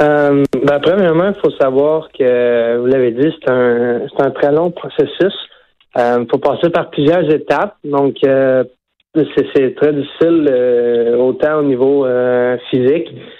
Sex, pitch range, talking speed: male, 125-155 Hz, 160 wpm